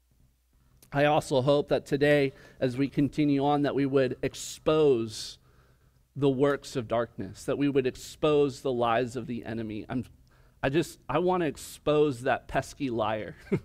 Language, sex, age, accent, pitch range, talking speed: English, male, 40-59, American, 130-170 Hz, 160 wpm